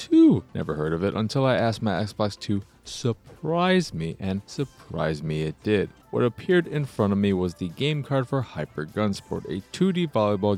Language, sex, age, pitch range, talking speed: English, male, 30-49, 95-140 Hz, 195 wpm